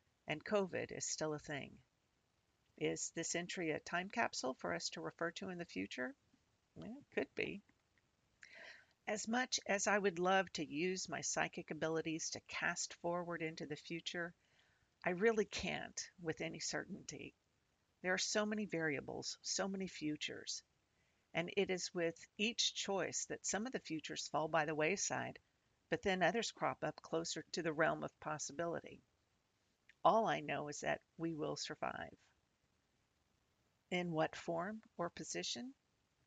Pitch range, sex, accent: 155-190 Hz, female, American